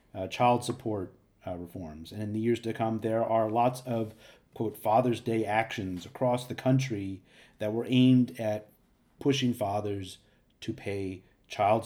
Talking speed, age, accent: 155 wpm, 40-59, American